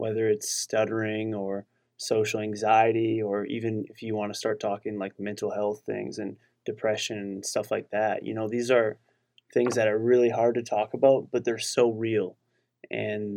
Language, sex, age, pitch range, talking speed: English, male, 20-39, 105-120 Hz, 185 wpm